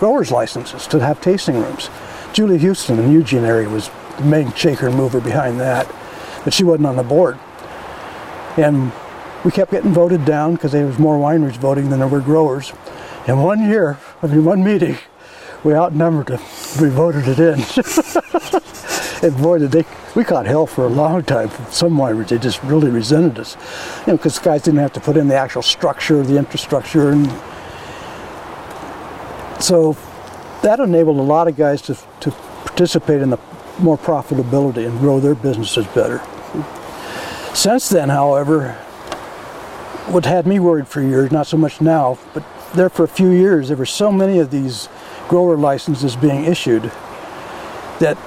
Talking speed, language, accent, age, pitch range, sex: 175 wpm, English, American, 60-79, 135-170 Hz, male